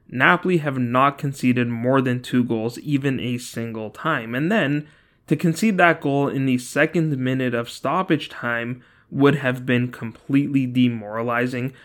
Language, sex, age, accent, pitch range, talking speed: English, male, 20-39, American, 120-150 Hz, 150 wpm